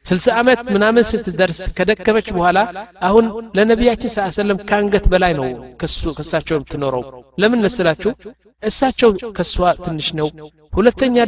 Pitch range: 160-220 Hz